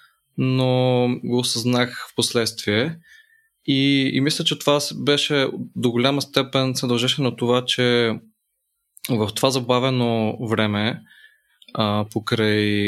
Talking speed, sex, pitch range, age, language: 115 wpm, male, 110-130 Hz, 20-39, Bulgarian